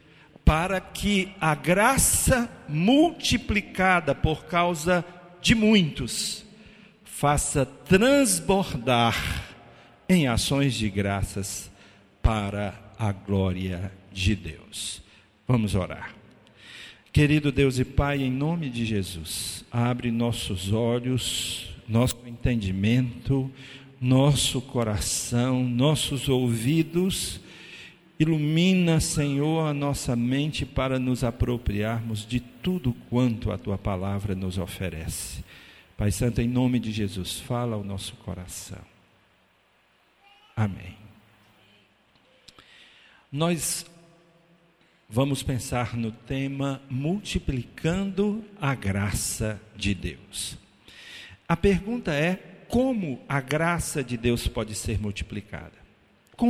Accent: Brazilian